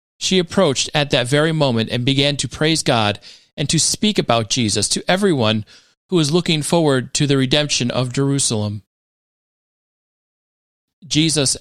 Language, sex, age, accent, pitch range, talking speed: English, male, 40-59, American, 110-155 Hz, 145 wpm